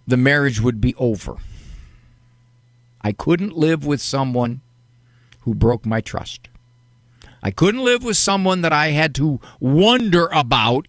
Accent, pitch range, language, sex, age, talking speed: American, 120-150 Hz, English, male, 50-69, 140 wpm